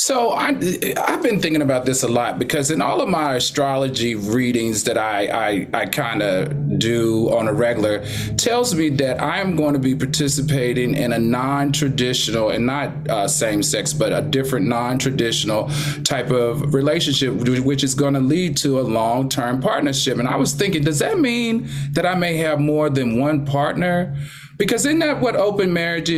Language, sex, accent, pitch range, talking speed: English, male, American, 130-160 Hz, 170 wpm